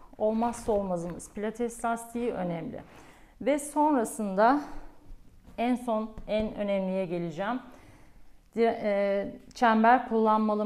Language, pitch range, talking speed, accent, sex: Turkish, 210-260 Hz, 80 wpm, native, female